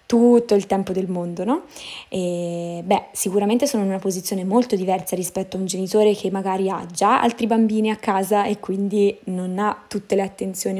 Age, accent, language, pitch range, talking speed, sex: 20-39, native, Italian, 185-210 Hz, 190 wpm, female